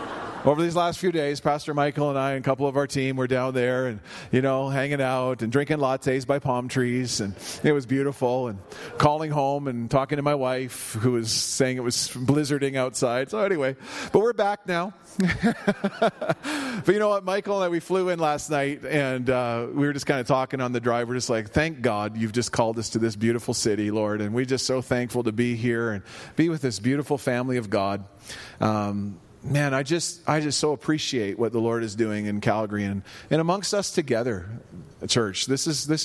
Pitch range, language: 120-145 Hz, English